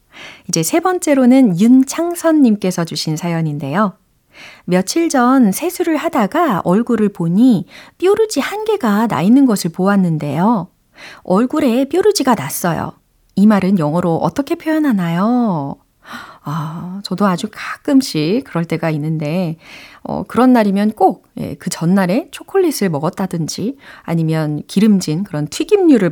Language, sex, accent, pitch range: Korean, female, native, 170-260 Hz